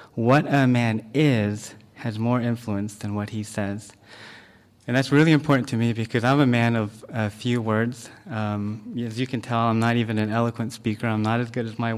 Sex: male